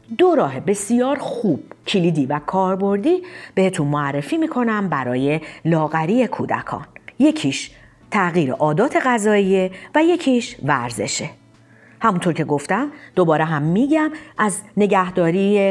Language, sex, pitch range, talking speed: Persian, female, 145-240 Hz, 105 wpm